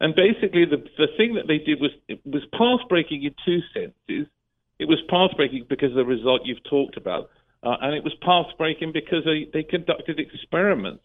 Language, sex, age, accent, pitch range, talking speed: English, male, 50-69, British, 120-155 Hz, 205 wpm